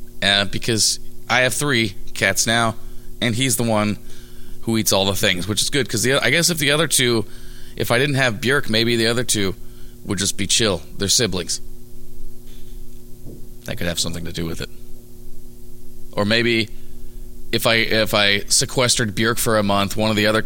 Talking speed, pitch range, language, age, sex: 190 wpm, 105-120 Hz, English, 30-49, male